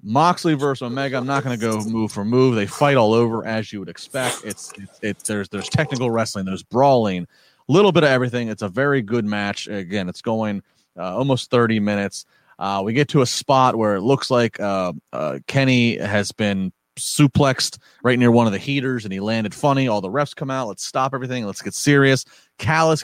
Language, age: English, 30-49